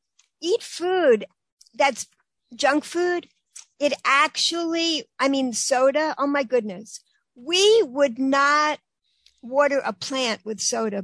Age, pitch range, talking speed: 60-79, 250-310 Hz, 115 wpm